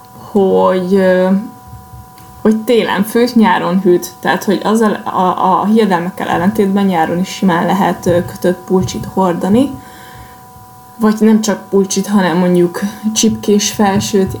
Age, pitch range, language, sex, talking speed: 20-39, 190-230 Hz, Hungarian, female, 120 wpm